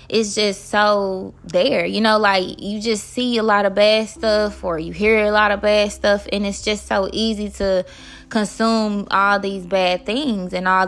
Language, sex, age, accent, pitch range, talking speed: English, female, 20-39, American, 180-215 Hz, 200 wpm